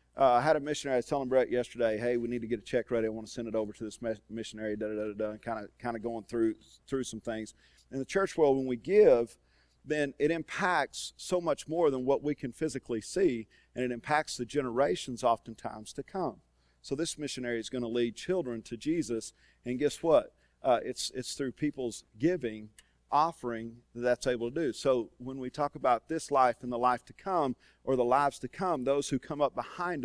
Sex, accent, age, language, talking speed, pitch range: male, American, 40-59, English, 220 wpm, 105-140 Hz